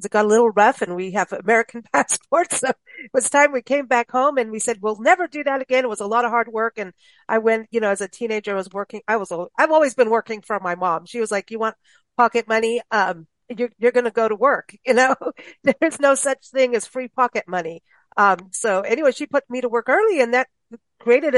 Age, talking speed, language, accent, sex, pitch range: 50-69, 255 wpm, English, American, female, 210-265 Hz